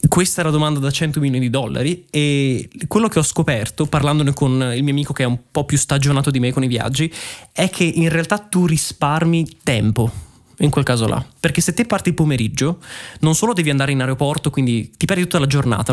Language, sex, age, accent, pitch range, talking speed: Italian, male, 20-39, native, 130-165 Hz, 220 wpm